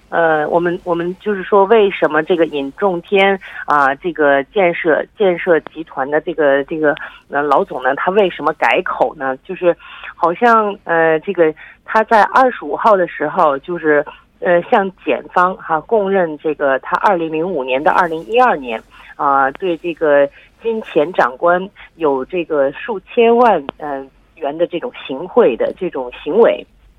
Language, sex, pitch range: Korean, female, 150-200 Hz